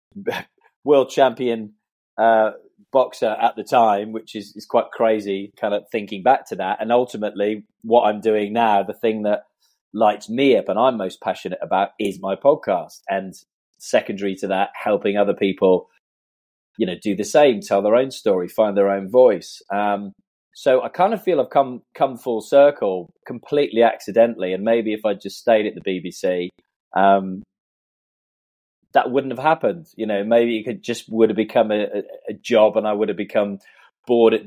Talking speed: 185 wpm